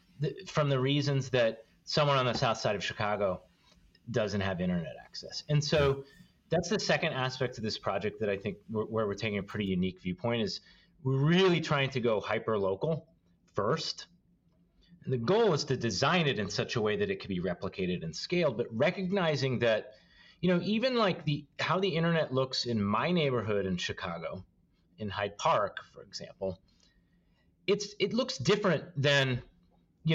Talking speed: 175 wpm